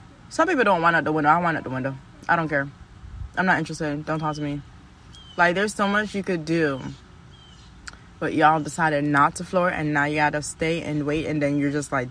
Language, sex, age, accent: English, female, 20-39, American